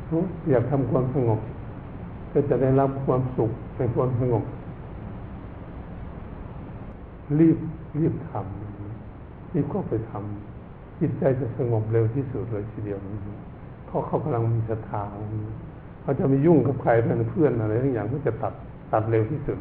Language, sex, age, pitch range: Thai, male, 60-79, 115-145 Hz